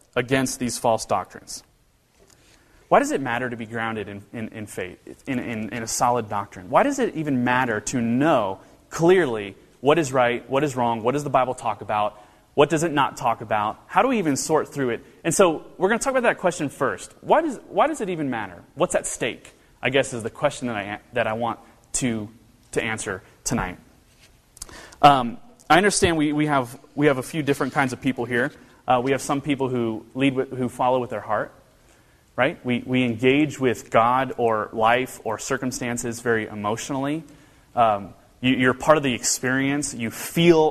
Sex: male